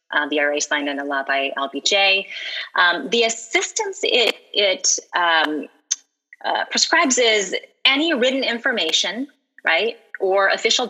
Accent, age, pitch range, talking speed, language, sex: American, 30-49, 155-245 Hz, 125 wpm, English, female